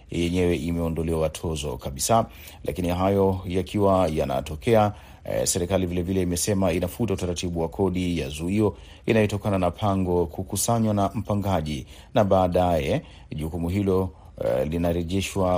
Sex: male